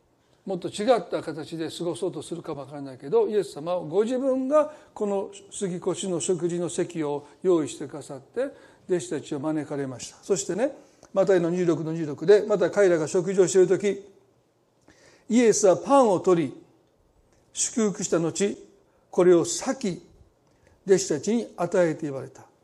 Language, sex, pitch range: Japanese, male, 165-230 Hz